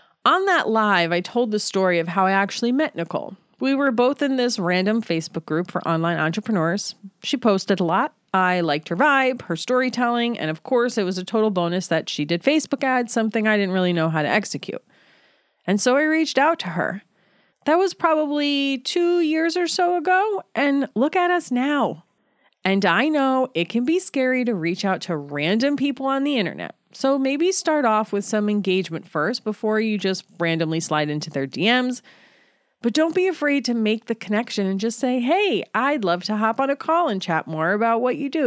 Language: English